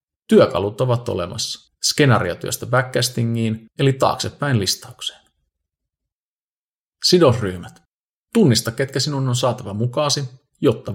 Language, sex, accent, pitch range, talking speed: Finnish, male, native, 100-130 Hz, 90 wpm